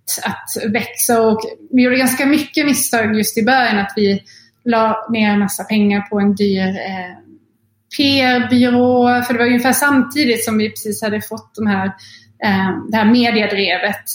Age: 20-39